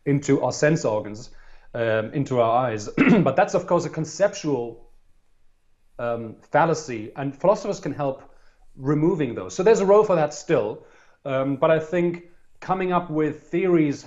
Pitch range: 135-175 Hz